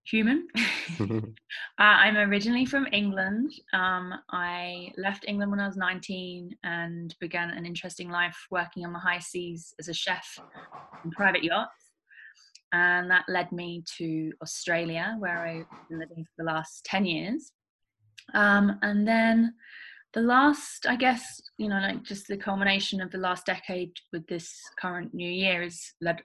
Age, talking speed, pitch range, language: 20-39, 160 wpm, 170-200 Hz, English